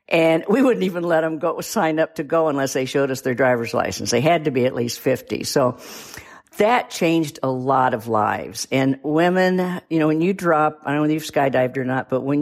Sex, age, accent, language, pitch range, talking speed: female, 50-69, American, English, 140-190 Hz, 235 wpm